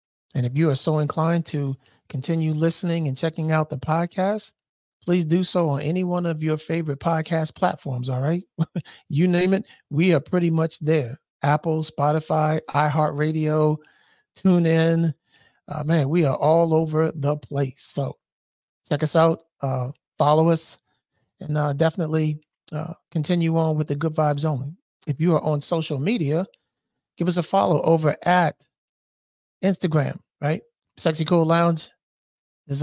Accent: American